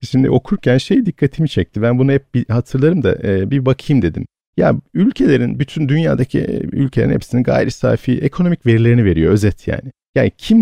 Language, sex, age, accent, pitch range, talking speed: Turkish, male, 50-69, native, 105-145 Hz, 165 wpm